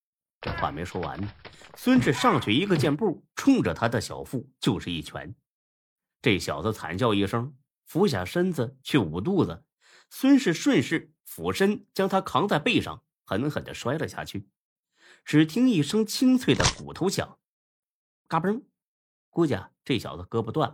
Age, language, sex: 30-49, Chinese, male